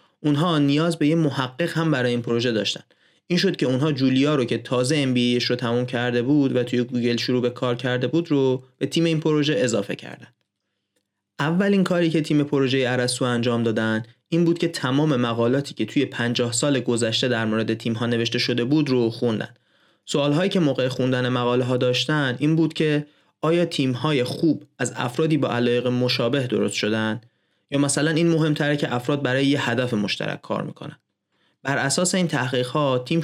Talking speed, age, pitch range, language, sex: 190 wpm, 30-49, 120-155 Hz, Persian, male